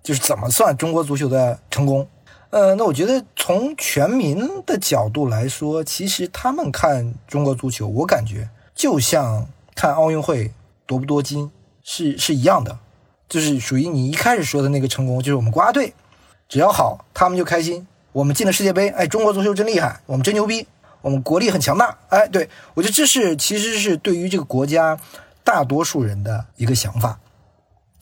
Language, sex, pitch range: Chinese, male, 125-195 Hz